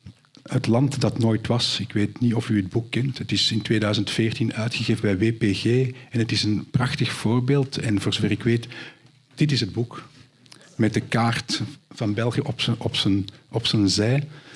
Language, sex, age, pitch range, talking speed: Dutch, male, 50-69, 105-125 Hz, 180 wpm